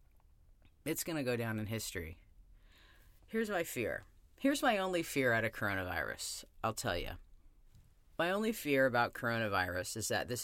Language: English